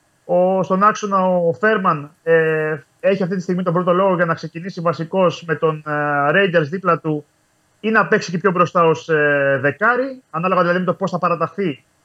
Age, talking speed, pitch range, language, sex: 30-49, 170 wpm, 150-190 Hz, Greek, male